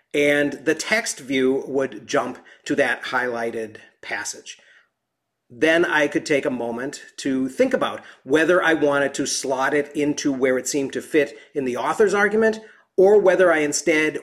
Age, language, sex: 40-59, English, male